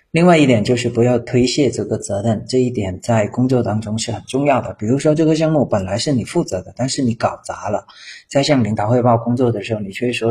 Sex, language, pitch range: male, Chinese, 105-125 Hz